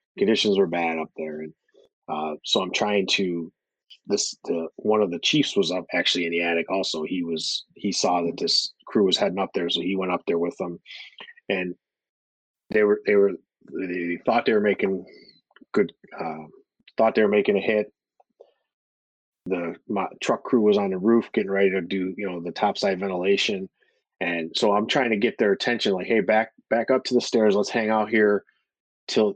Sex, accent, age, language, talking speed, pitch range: male, American, 30-49, English, 200 wpm, 85-105 Hz